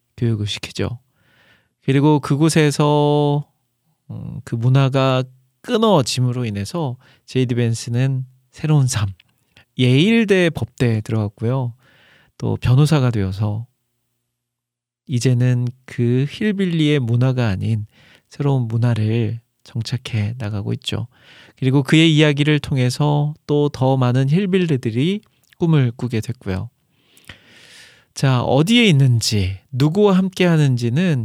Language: Korean